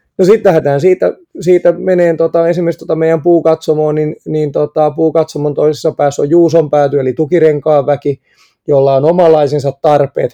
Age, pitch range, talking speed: 20-39, 140-165 Hz, 155 wpm